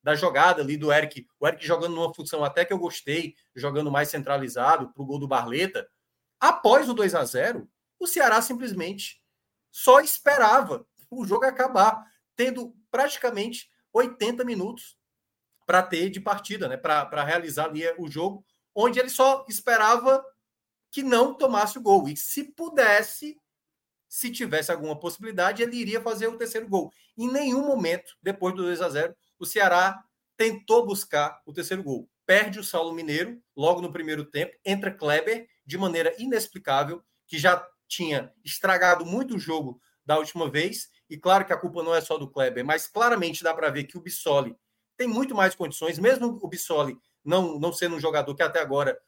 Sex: male